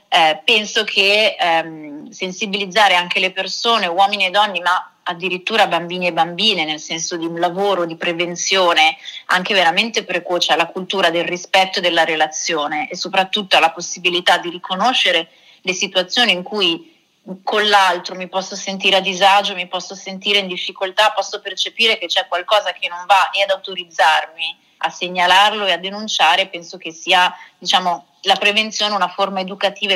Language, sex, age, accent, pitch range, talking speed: Italian, female, 30-49, native, 175-205 Hz, 155 wpm